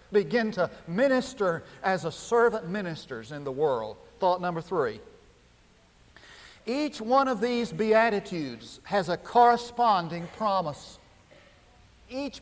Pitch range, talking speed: 170-225 Hz, 110 wpm